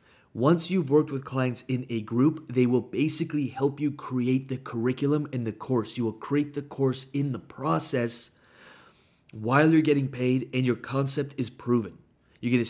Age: 30-49